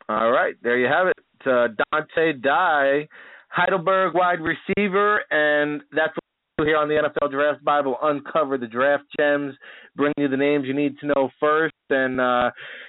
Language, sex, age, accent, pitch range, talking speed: English, male, 30-49, American, 130-155 Hz, 175 wpm